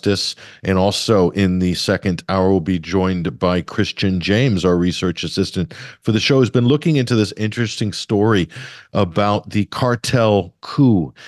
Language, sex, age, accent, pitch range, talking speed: English, male, 50-69, American, 90-105 Hz, 155 wpm